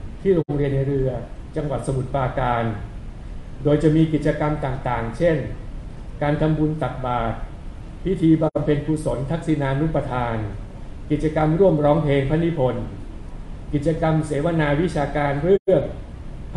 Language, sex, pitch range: Thai, male, 130-155 Hz